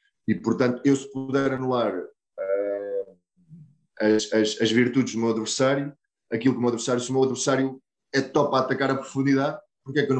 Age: 20-39